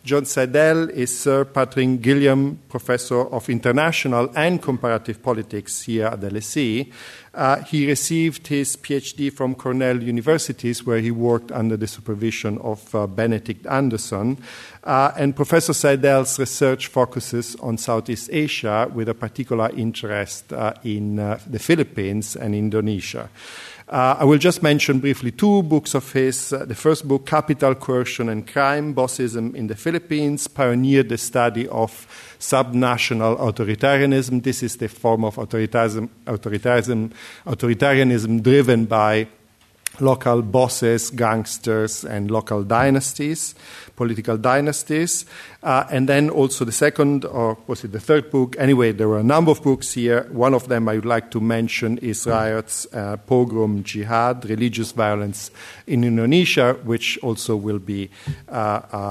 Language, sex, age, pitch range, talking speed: English, male, 50-69, 110-135 Hz, 145 wpm